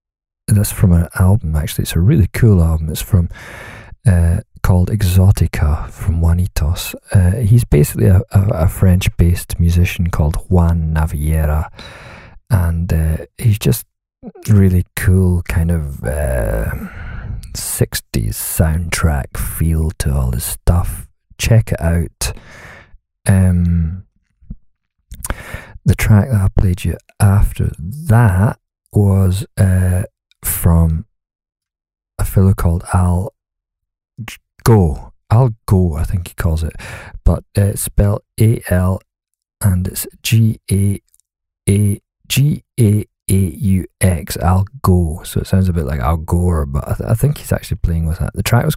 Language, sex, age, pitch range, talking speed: English, male, 40-59, 85-105 Hz, 135 wpm